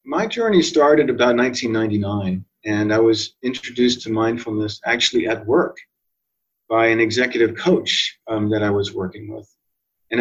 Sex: male